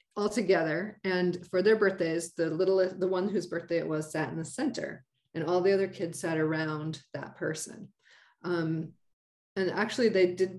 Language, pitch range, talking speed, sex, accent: English, 165-205 Hz, 180 wpm, female, American